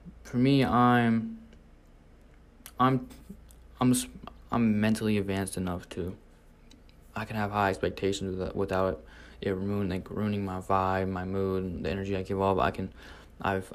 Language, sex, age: English, male, 20-39